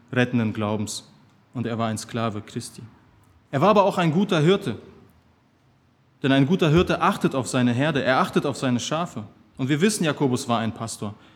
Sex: male